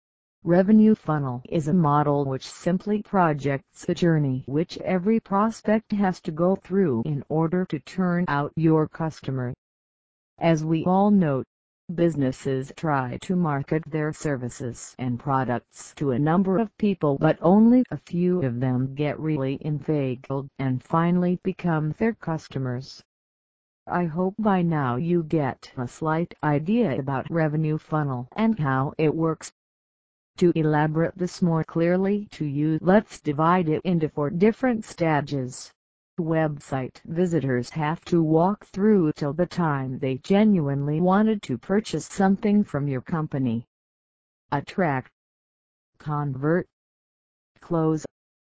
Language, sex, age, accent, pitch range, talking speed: English, female, 50-69, American, 140-180 Hz, 130 wpm